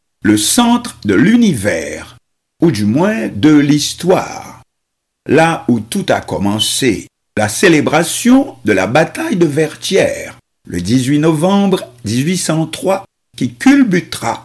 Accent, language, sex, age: French, French, male, 60-79